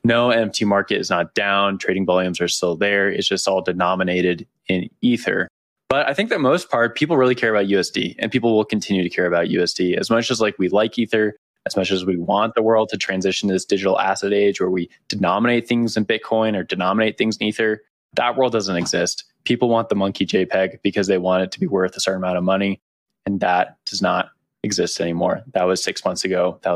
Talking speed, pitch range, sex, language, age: 225 wpm, 95-115 Hz, male, English, 20-39